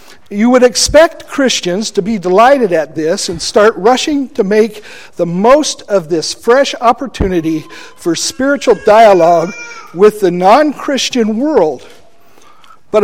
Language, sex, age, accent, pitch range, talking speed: English, male, 50-69, American, 180-250 Hz, 135 wpm